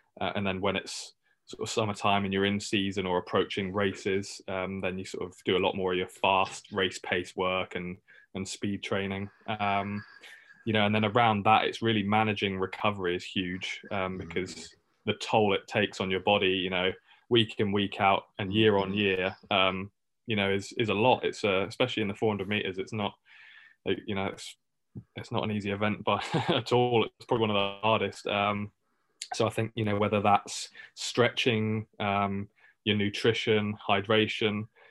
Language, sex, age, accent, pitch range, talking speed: English, male, 20-39, British, 95-110 Hz, 195 wpm